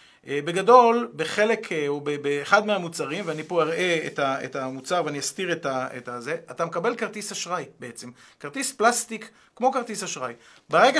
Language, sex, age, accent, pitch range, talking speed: Hebrew, male, 40-59, native, 150-210 Hz, 135 wpm